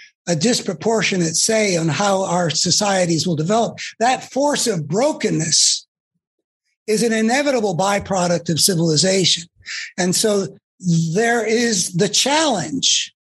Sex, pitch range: male, 170-220 Hz